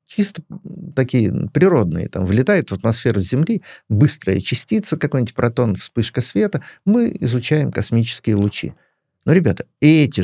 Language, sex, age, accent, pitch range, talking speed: Russian, male, 50-69, native, 100-145 Hz, 125 wpm